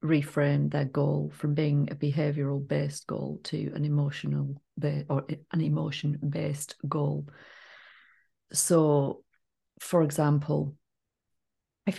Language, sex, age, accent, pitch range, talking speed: English, female, 40-59, British, 140-155 Hz, 105 wpm